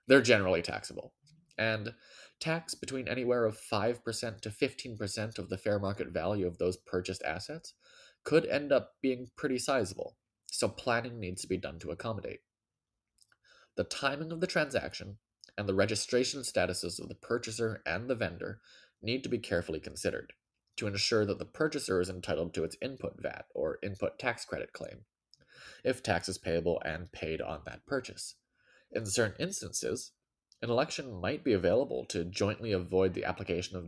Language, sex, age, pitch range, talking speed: English, male, 20-39, 90-125 Hz, 165 wpm